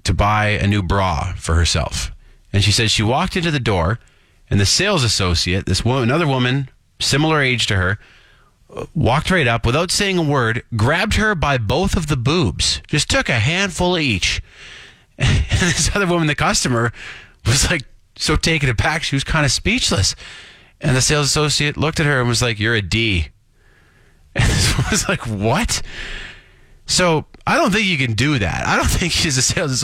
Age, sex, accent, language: 30-49, male, American, English